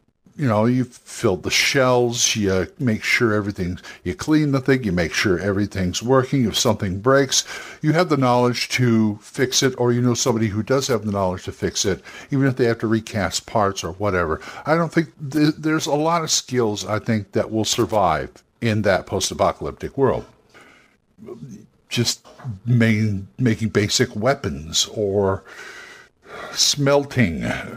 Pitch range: 110-135 Hz